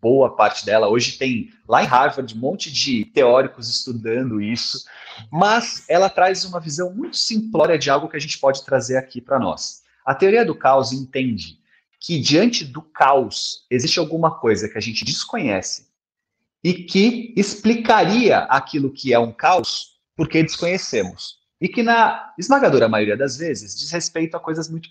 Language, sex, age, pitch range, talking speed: Portuguese, male, 30-49, 130-200 Hz, 165 wpm